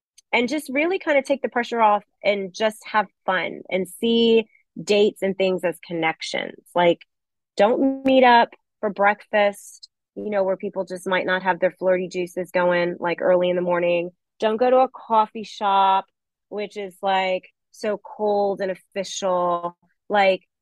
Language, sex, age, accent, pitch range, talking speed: English, female, 30-49, American, 185-225 Hz, 165 wpm